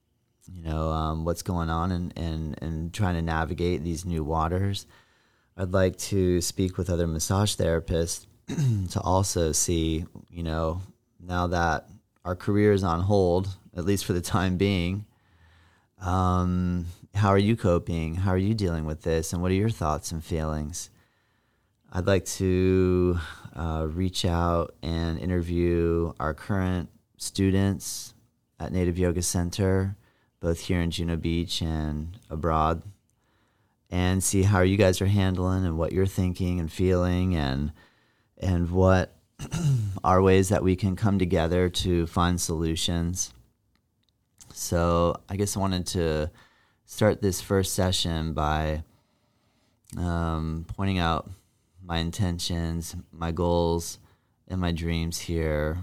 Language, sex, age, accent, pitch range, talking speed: English, male, 30-49, American, 85-100 Hz, 140 wpm